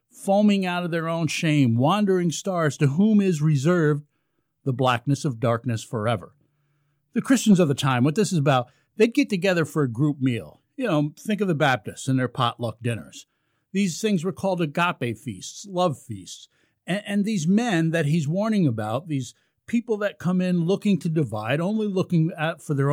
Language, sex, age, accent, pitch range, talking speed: English, male, 50-69, American, 130-180 Hz, 190 wpm